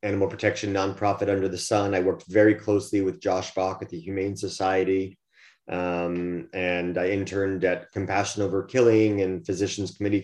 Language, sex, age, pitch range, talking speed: English, male, 30-49, 95-105 Hz, 165 wpm